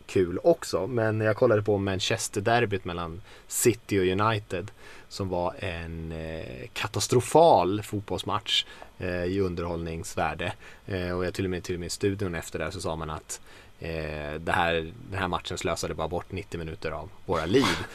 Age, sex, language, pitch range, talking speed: 20-39, male, Swedish, 100-130 Hz, 155 wpm